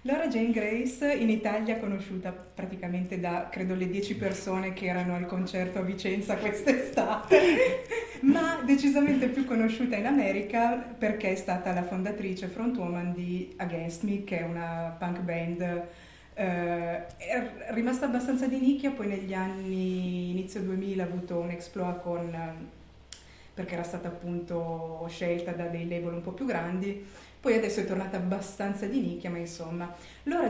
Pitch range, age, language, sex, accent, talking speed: 175-210 Hz, 30-49, Italian, female, native, 150 wpm